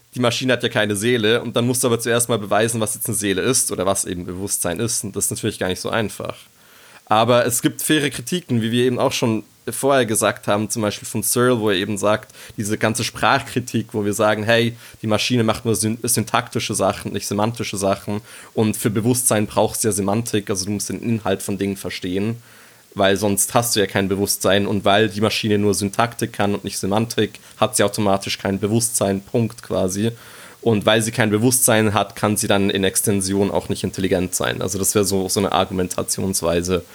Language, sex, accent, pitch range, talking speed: German, male, German, 100-120 Hz, 215 wpm